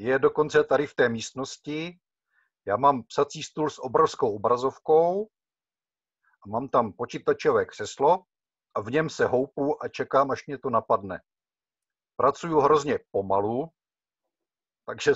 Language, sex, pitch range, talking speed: Italian, male, 115-150 Hz, 130 wpm